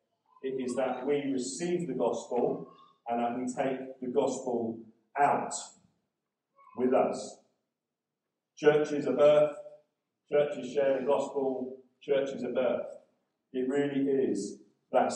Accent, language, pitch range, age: British, English, 135-175 Hz, 40-59